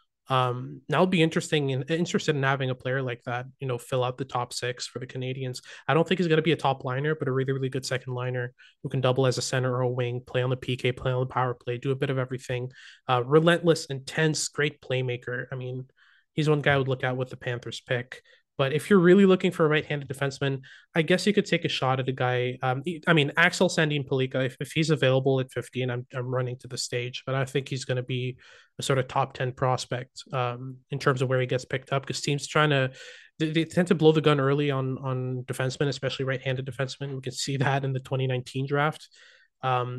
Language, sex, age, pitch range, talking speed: English, male, 20-39, 130-150 Hz, 255 wpm